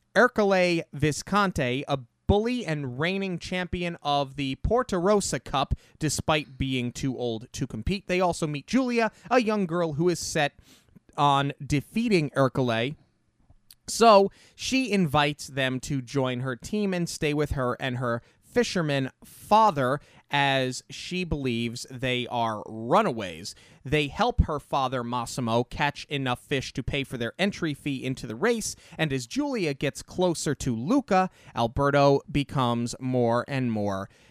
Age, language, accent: 30-49, English, American